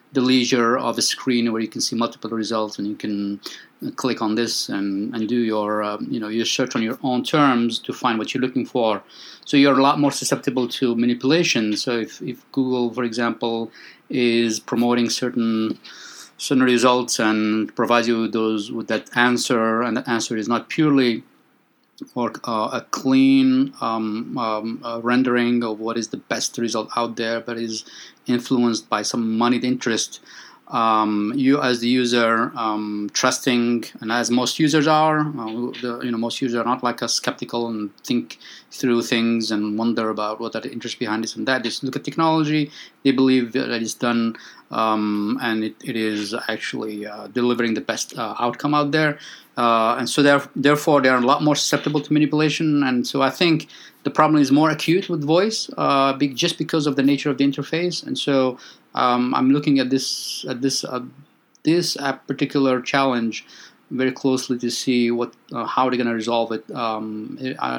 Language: English